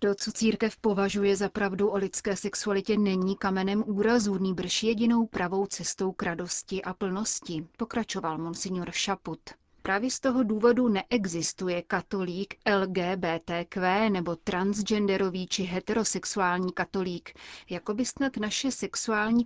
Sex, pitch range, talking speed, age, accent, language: female, 180-215 Hz, 125 wpm, 30-49, native, Czech